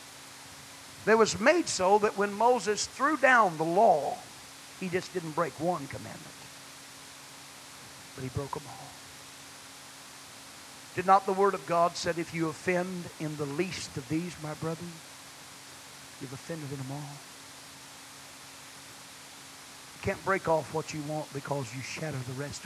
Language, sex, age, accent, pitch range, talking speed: English, male, 50-69, American, 140-190 Hz, 150 wpm